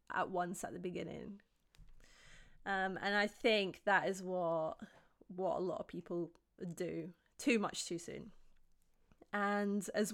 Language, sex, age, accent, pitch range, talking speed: English, female, 20-39, British, 175-210 Hz, 140 wpm